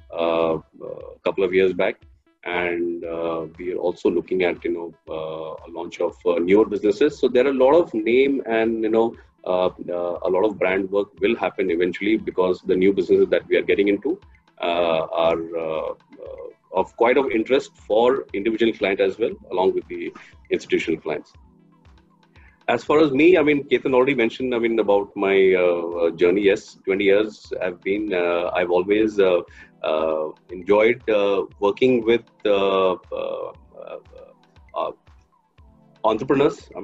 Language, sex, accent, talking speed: English, male, Indian, 170 wpm